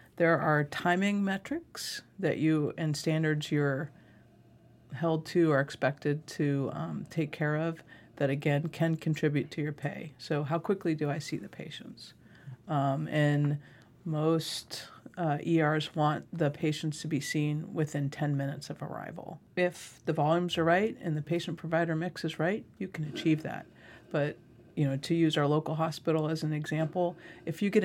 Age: 50-69